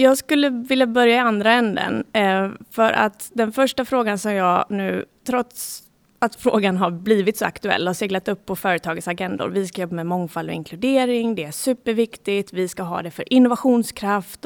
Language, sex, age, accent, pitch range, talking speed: Swedish, female, 30-49, native, 190-245 Hz, 185 wpm